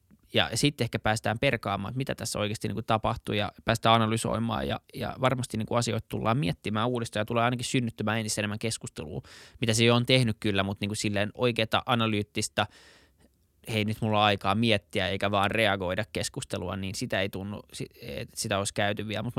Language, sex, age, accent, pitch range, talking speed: Finnish, male, 20-39, native, 105-120 Hz, 190 wpm